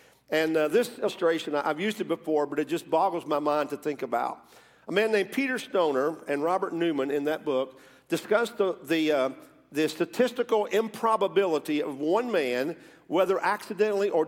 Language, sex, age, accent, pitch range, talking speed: English, male, 50-69, American, 150-200 Hz, 170 wpm